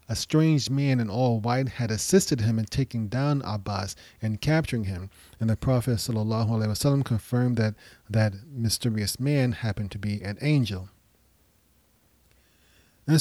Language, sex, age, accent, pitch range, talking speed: English, male, 30-49, American, 110-140 Hz, 135 wpm